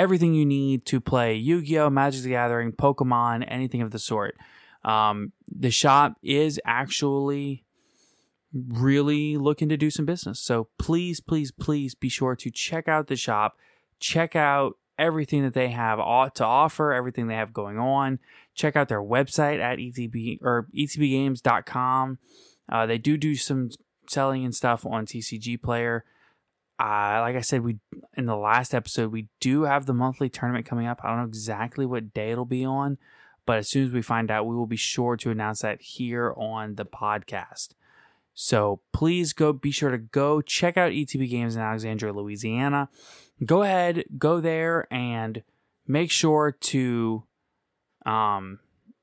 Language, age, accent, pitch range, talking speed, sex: English, 20-39, American, 115-145 Hz, 170 wpm, male